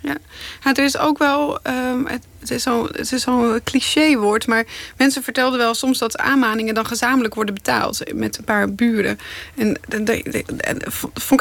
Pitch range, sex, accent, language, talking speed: 225-255 Hz, female, Dutch, Dutch, 170 wpm